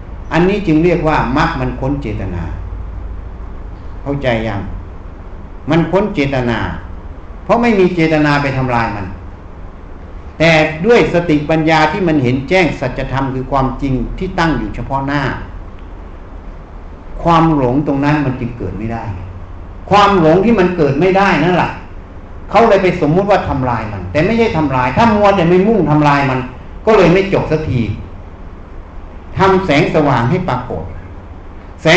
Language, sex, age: Thai, male, 60-79